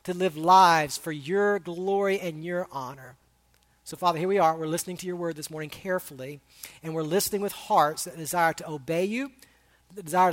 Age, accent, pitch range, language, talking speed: 40-59, American, 185-270 Hz, English, 200 wpm